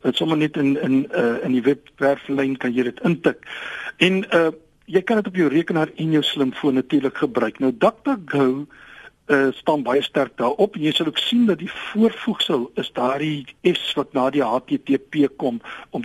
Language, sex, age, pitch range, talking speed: Dutch, male, 60-79, 140-210 Hz, 195 wpm